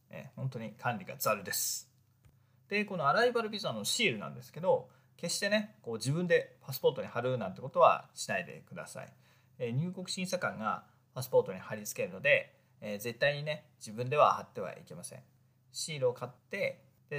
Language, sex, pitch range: Japanese, male, 125-180 Hz